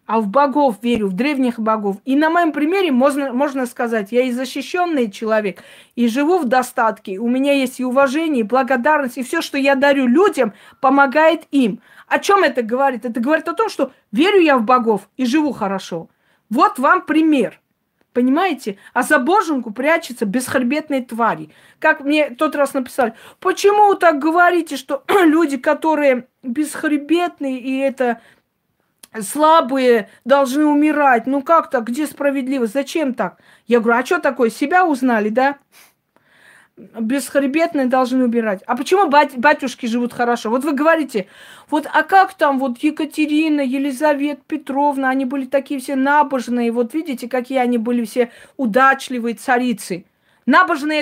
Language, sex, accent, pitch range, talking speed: Russian, female, native, 245-305 Hz, 155 wpm